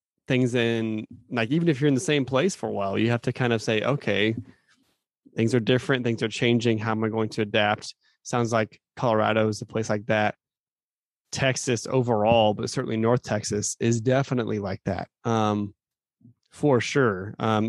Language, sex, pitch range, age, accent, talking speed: English, male, 110-130 Hz, 20-39, American, 185 wpm